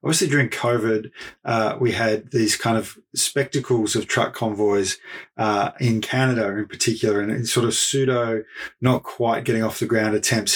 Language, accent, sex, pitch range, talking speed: English, Australian, male, 110-140 Hz, 170 wpm